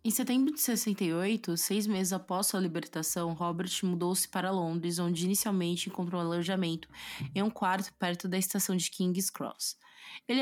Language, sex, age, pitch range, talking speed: Portuguese, female, 20-39, 175-200 Hz, 160 wpm